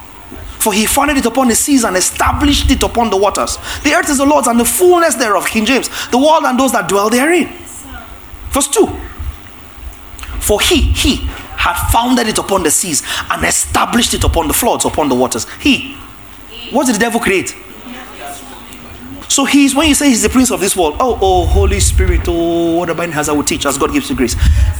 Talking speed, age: 200 wpm, 30-49